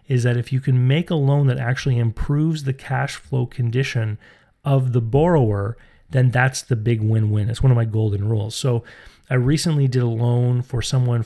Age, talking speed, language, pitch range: 30-49, 195 wpm, English, 115-130 Hz